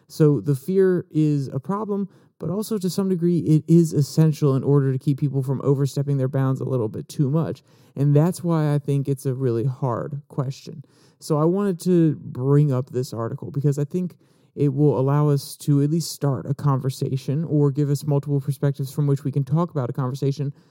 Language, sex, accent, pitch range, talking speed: English, male, American, 135-155 Hz, 210 wpm